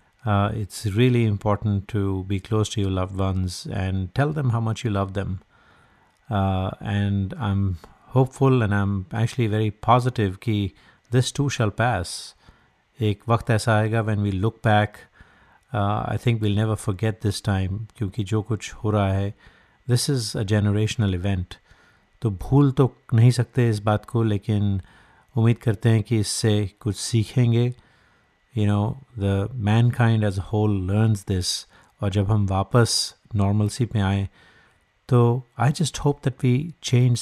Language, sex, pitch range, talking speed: Hindi, male, 100-115 Hz, 160 wpm